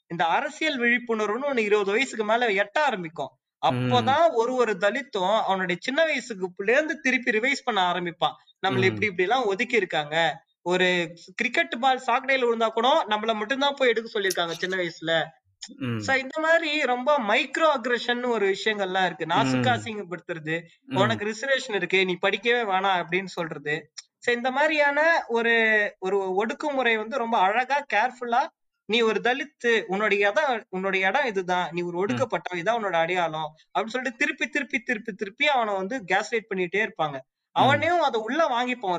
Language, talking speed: Tamil, 130 wpm